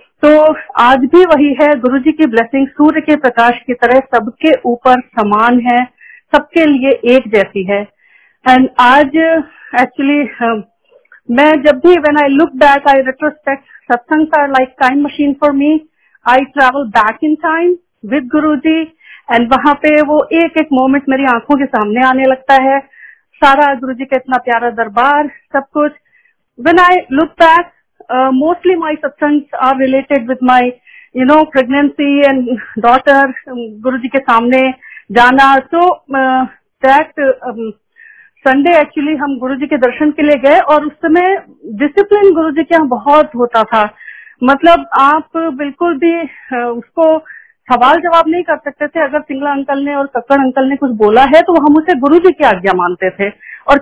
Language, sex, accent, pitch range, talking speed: Hindi, female, native, 255-310 Hz, 165 wpm